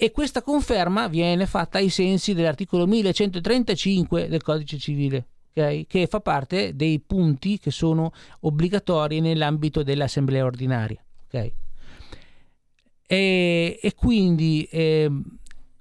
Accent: native